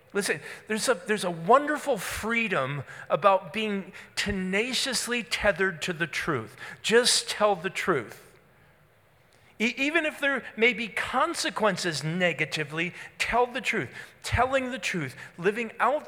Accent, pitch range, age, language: American, 150-230 Hz, 40-59, English